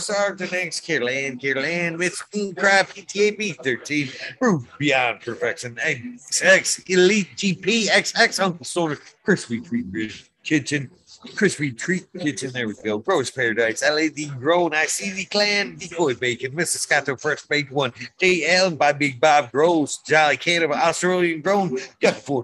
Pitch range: 140-190 Hz